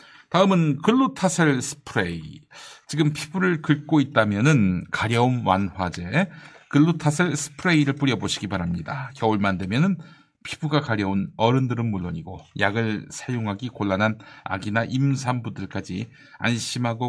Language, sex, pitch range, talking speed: English, male, 100-145 Hz, 90 wpm